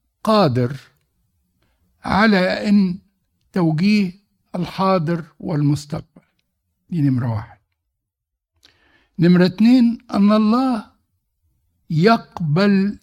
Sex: male